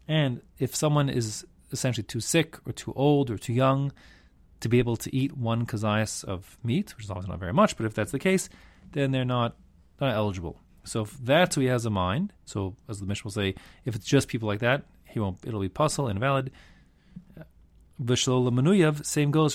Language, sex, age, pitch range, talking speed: English, male, 30-49, 95-130 Hz, 210 wpm